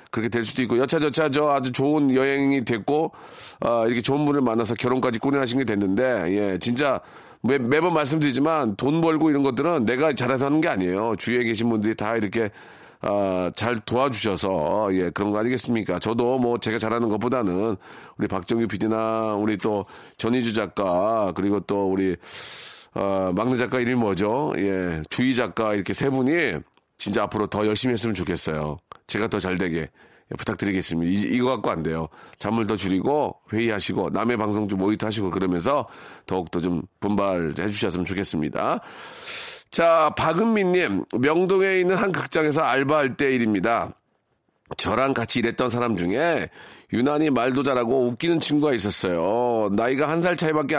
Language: Korean